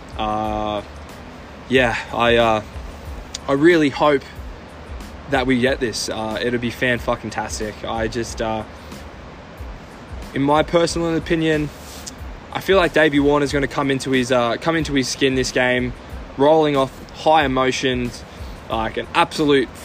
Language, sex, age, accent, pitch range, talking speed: English, male, 20-39, Australian, 110-145 Hz, 140 wpm